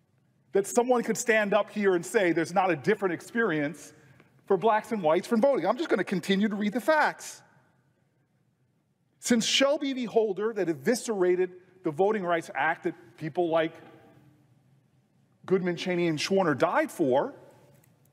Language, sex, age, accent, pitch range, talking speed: English, male, 40-59, American, 185-250 Hz, 155 wpm